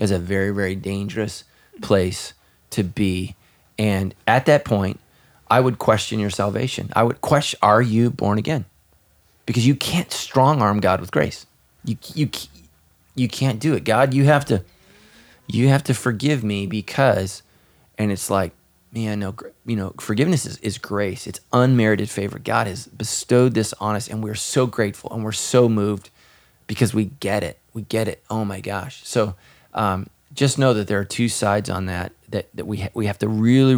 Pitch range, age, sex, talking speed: 95-115 Hz, 20-39, male, 185 wpm